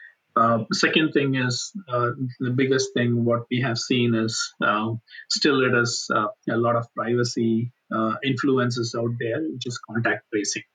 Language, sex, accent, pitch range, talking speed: English, male, Indian, 115-130 Hz, 165 wpm